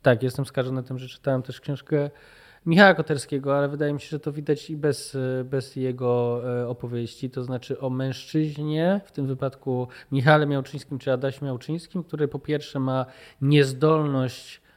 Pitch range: 125-145 Hz